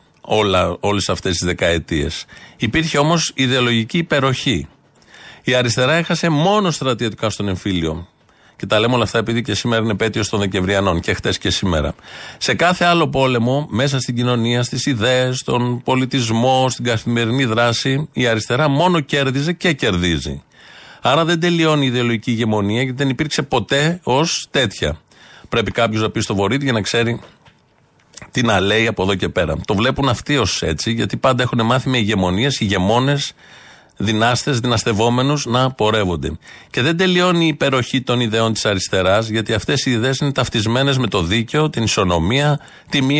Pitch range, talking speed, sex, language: 110-140 Hz, 160 wpm, male, Greek